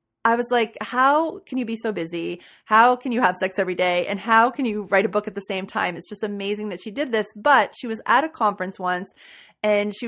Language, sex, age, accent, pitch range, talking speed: English, female, 30-49, American, 185-230 Hz, 255 wpm